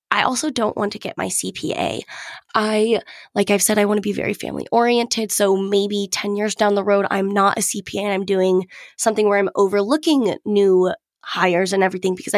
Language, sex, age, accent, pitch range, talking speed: English, female, 20-39, American, 190-235 Hz, 205 wpm